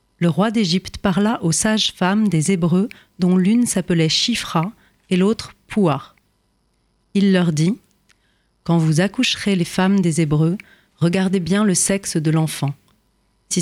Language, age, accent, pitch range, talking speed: French, 40-59, French, 165-205 Hz, 145 wpm